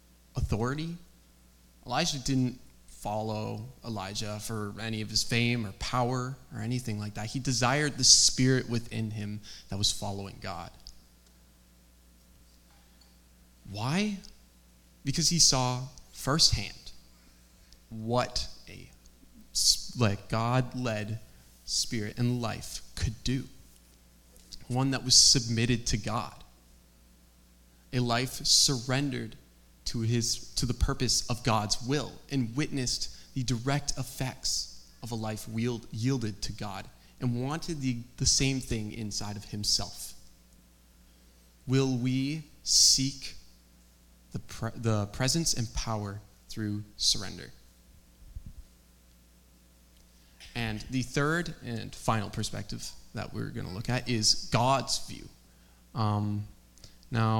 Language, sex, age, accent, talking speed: English, male, 20-39, American, 110 wpm